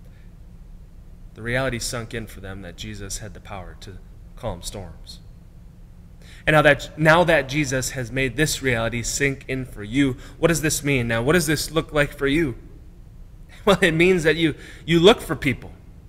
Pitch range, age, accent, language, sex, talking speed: 100-145 Hz, 30-49, American, English, male, 185 wpm